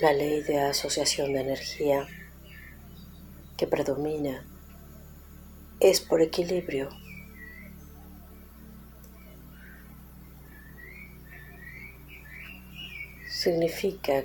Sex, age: female, 40-59